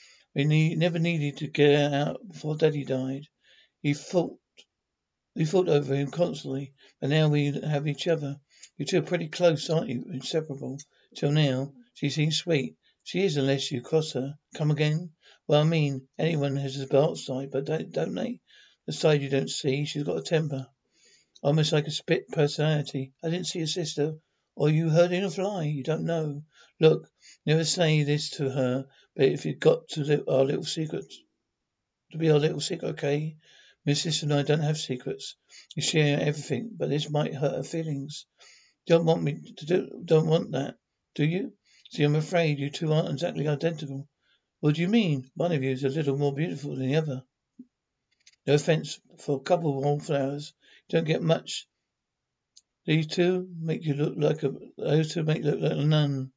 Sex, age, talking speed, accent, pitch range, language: male, 60-79, 195 wpm, British, 140-160 Hz, English